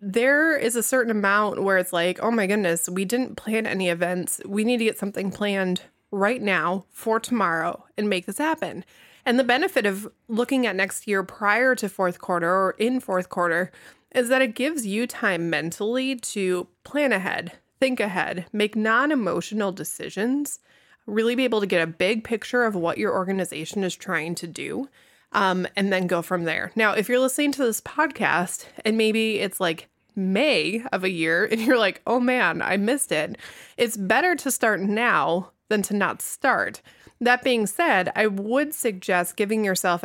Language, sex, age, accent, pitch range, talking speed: English, female, 20-39, American, 185-235 Hz, 185 wpm